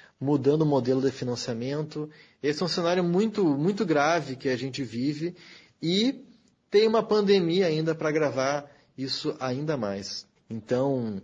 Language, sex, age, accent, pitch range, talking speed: Portuguese, male, 20-39, Brazilian, 120-155 Hz, 145 wpm